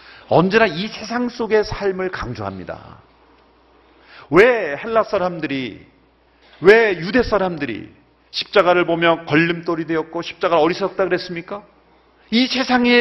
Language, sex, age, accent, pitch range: Korean, male, 40-59, native, 165-235 Hz